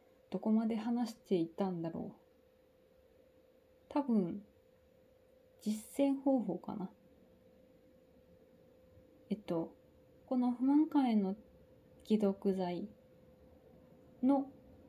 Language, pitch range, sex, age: Japanese, 160-245 Hz, female, 20-39